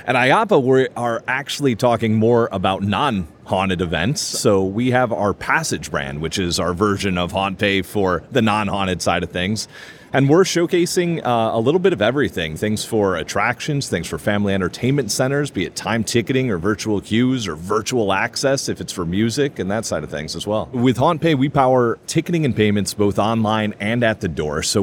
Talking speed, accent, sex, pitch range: 200 wpm, American, male, 100-135 Hz